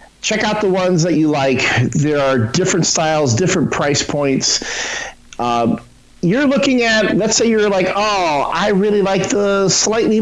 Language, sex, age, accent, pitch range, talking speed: English, male, 50-69, American, 135-200 Hz, 165 wpm